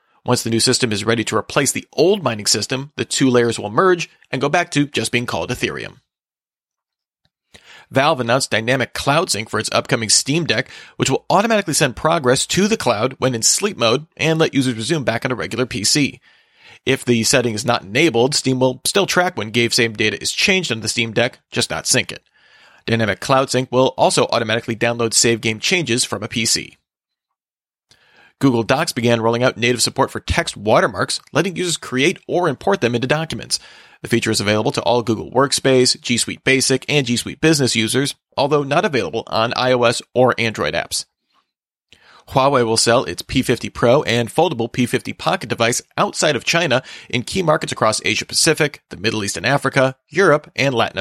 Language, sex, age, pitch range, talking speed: English, male, 40-59, 115-140 Hz, 190 wpm